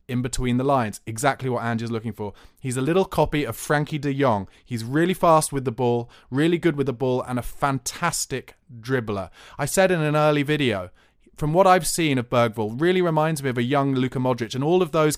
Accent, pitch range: British, 115-145 Hz